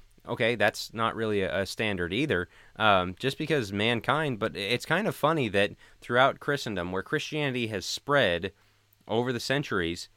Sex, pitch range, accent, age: male, 100-130 Hz, American, 20-39